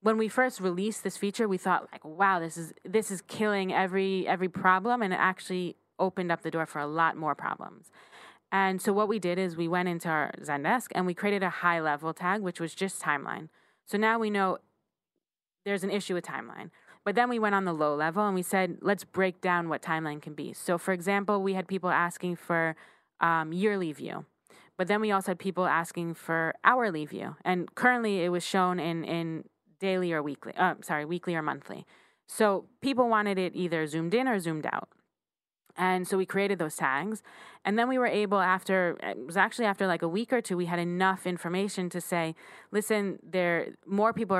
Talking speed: 210 wpm